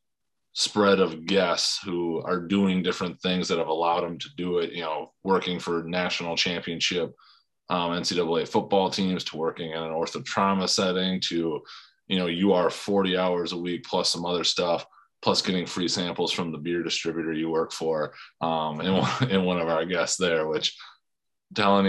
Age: 20-39